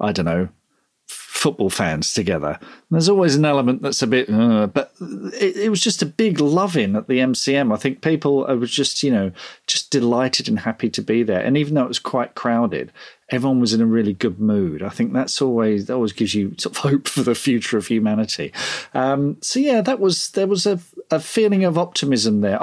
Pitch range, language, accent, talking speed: 115-165 Hz, English, British, 220 wpm